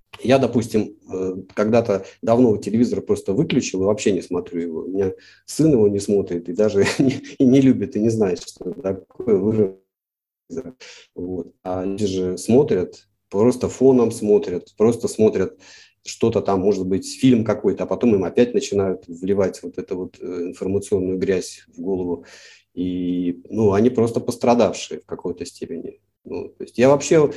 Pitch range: 95-130 Hz